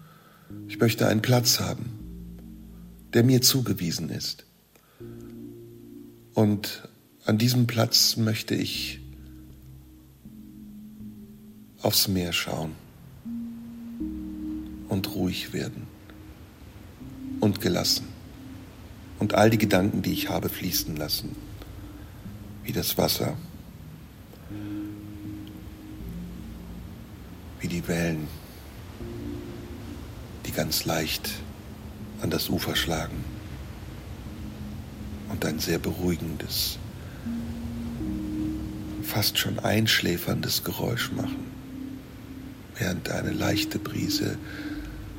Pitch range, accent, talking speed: 95-110 Hz, German, 75 wpm